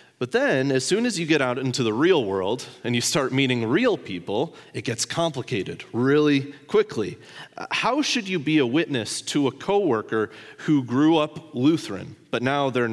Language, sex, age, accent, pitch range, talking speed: English, male, 30-49, American, 125-190 Hz, 180 wpm